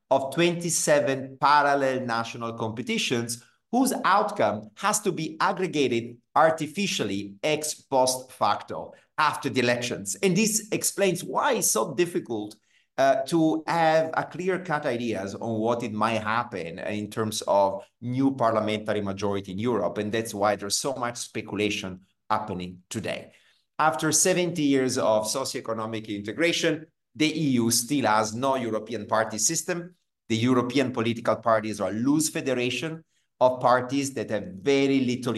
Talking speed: 140 wpm